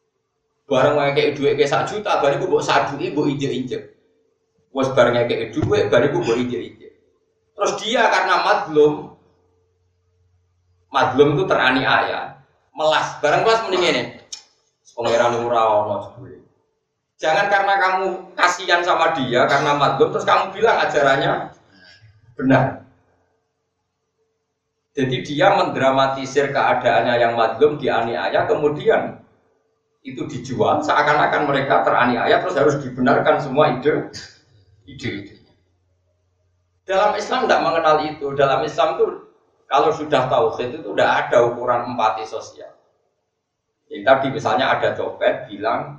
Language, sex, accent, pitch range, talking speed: Indonesian, male, native, 115-155 Hz, 120 wpm